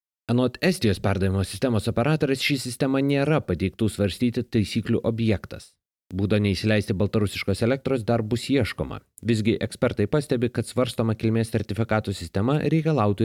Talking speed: 120 wpm